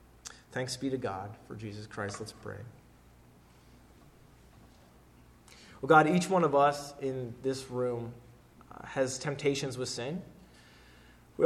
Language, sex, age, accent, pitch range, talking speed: English, male, 30-49, American, 115-135 Hz, 120 wpm